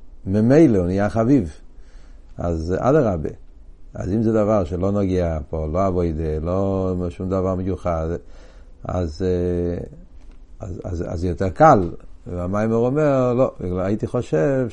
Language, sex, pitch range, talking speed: Hebrew, male, 85-110 Hz, 125 wpm